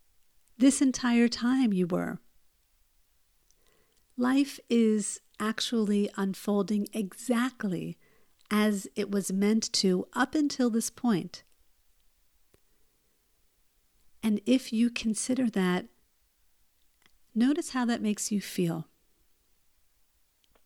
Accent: American